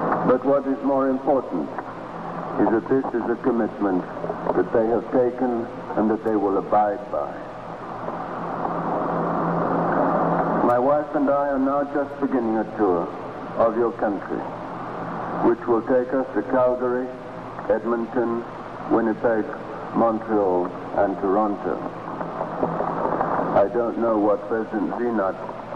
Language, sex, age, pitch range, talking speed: Italian, male, 60-79, 110-135 Hz, 120 wpm